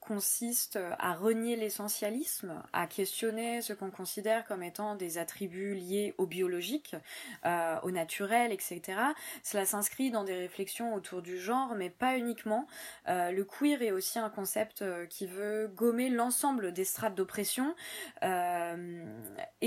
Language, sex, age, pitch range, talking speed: French, female, 20-39, 180-225 Hz, 140 wpm